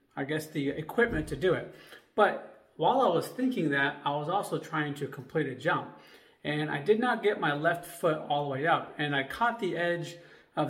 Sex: male